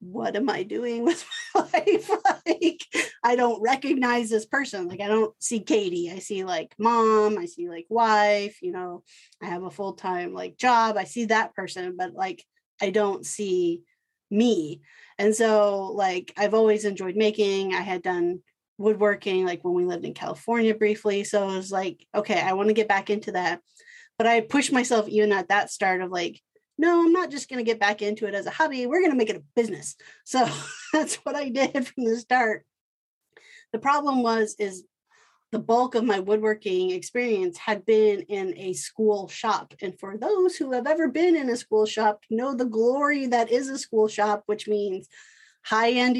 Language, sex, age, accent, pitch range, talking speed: English, female, 30-49, American, 200-270 Hz, 195 wpm